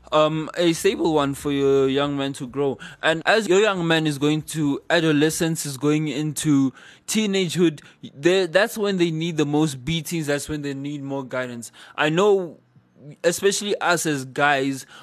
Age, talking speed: 20-39, 170 wpm